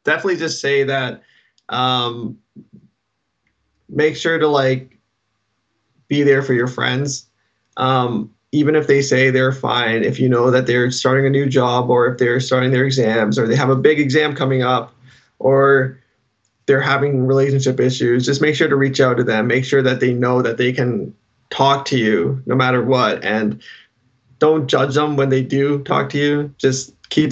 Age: 20-39